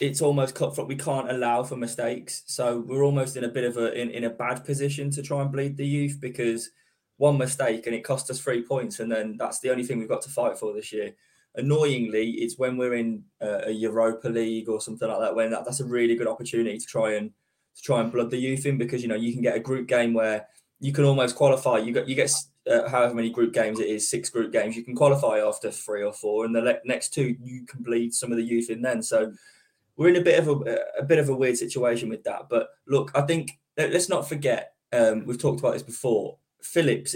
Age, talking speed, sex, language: 20-39, 250 wpm, male, English